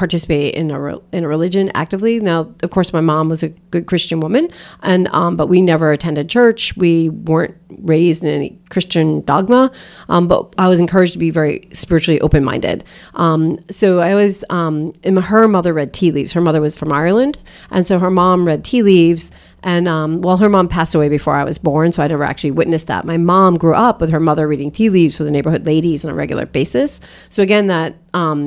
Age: 40-59